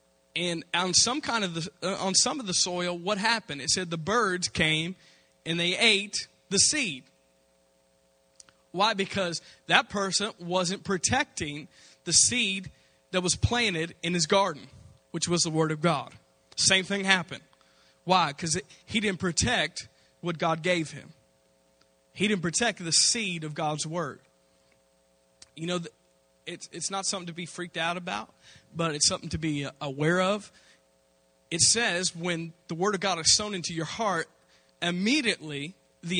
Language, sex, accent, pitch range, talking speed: English, male, American, 135-195 Hz, 160 wpm